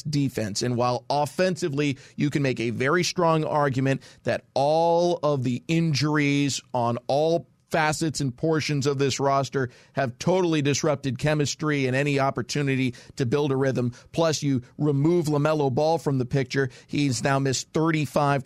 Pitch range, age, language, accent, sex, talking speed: 130-155 Hz, 40-59, English, American, male, 155 wpm